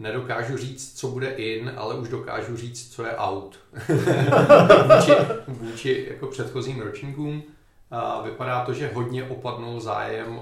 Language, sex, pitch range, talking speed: Czech, male, 105-120 Hz, 140 wpm